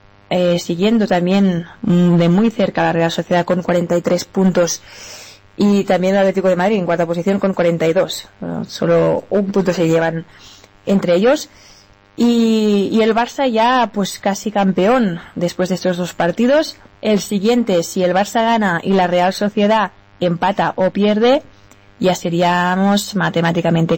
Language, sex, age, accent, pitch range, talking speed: Spanish, female, 20-39, Spanish, 175-225 Hz, 150 wpm